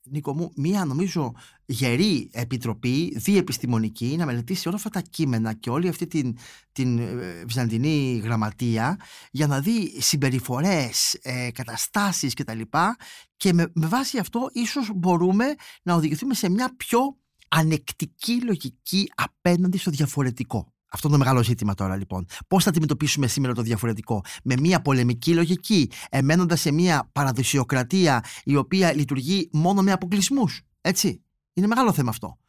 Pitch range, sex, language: 125-180 Hz, male, Greek